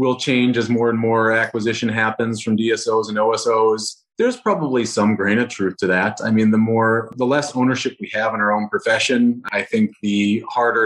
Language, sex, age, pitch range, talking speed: English, male, 30-49, 110-135 Hz, 205 wpm